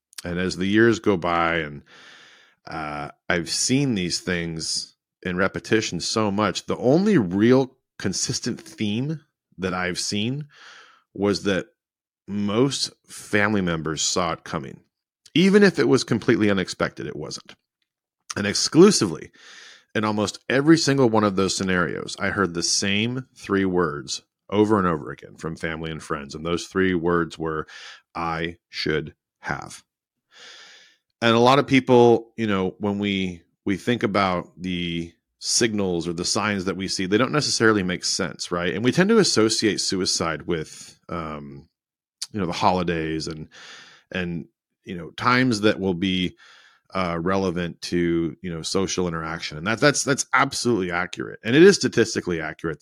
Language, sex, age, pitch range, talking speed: English, male, 30-49, 85-115 Hz, 155 wpm